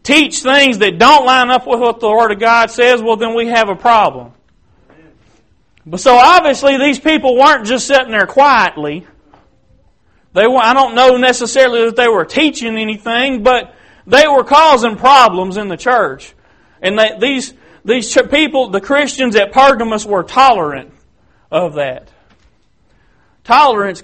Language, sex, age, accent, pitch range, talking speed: English, male, 40-59, American, 195-265 Hz, 150 wpm